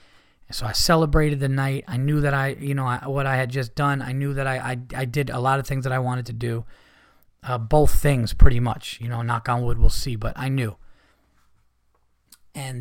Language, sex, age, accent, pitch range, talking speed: English, male, 30-49, American, 120-150 Hz, 230 wpm